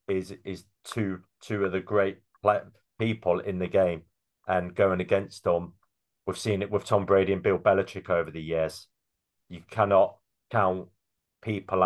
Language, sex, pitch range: English, male, 90-105 Hz